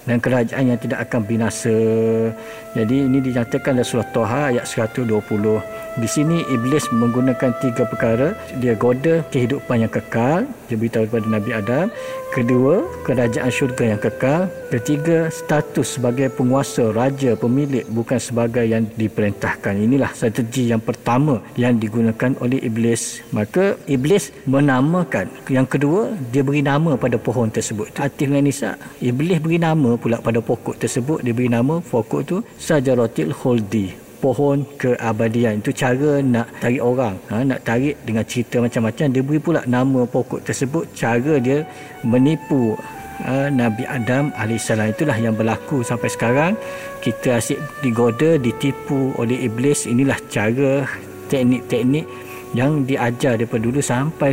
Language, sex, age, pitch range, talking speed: Malay, male, 50-69, 115-145 Hz, 135 wpm